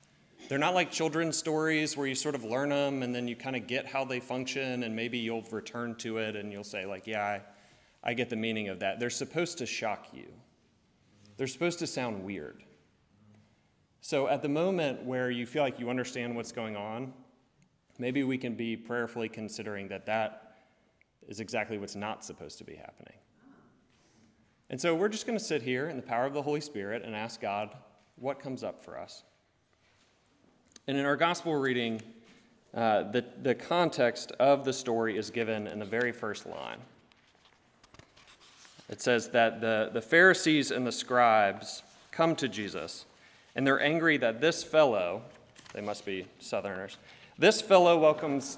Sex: male